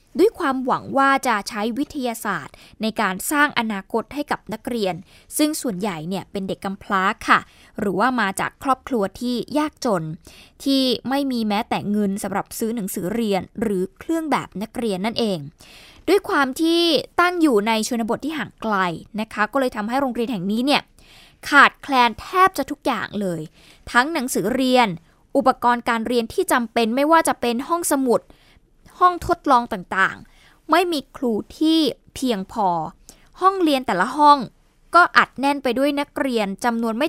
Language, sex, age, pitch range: Thai, female, 20-39, 210-280 Hz